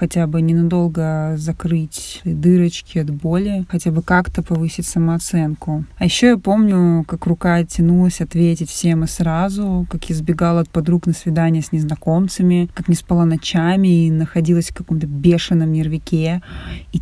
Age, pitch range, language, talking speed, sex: 20-39, 160-175 Hz, Russian, 150 wpm, female